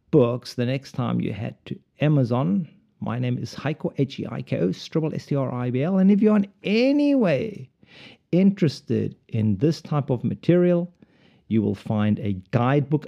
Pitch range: 120-175 Hz